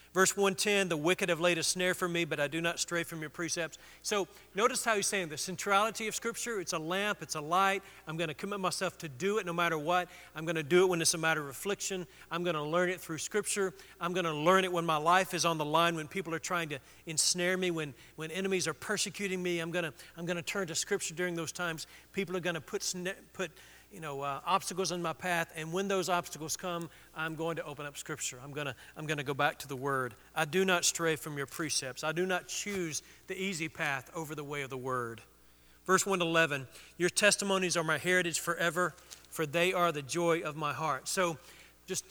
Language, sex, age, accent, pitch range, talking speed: English, male, 40-59, American, 155-190 Hz, 240 wpm